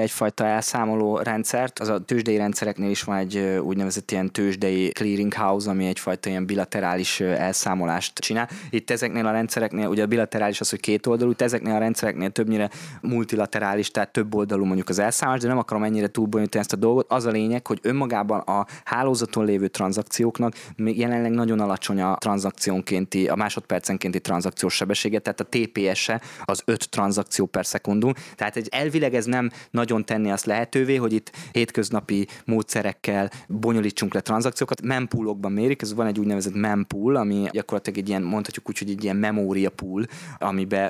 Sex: male